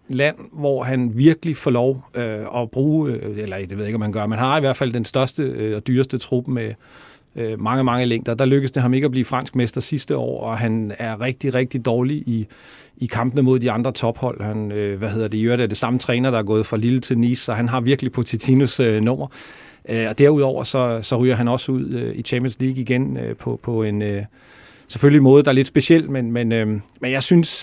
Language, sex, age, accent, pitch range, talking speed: Danish, male, 40-59, native, 115-135 Hz, 245 wpm